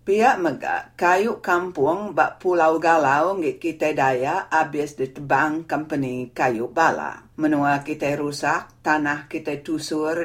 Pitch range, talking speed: 145-165 Hz, 125 wpm